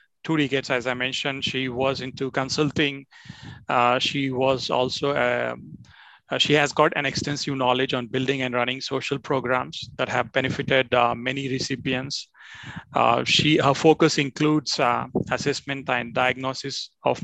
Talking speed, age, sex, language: 145 wpm, 30-49, male, English